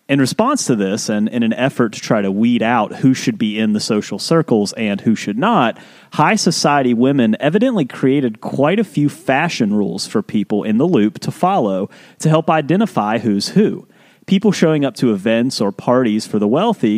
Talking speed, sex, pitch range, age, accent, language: 200 wpm, male, 110-155 Hz, 30-49, American, English